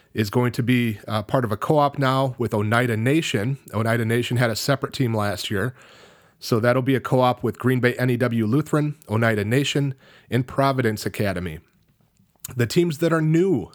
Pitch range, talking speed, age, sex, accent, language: 115-145 Hz, 180 wpm, 30-49, male, American, English